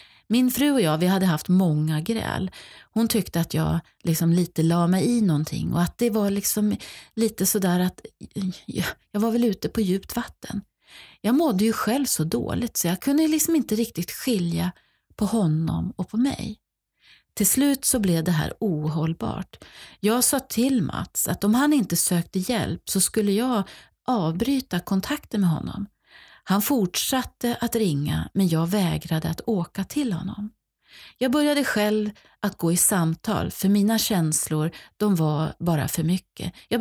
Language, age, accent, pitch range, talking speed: Swedish, 40-59, native, 175-230 Hz, 160 wpm